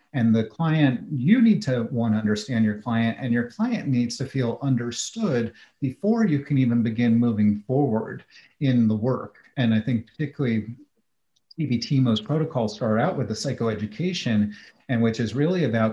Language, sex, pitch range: English, male, 105-120 Hz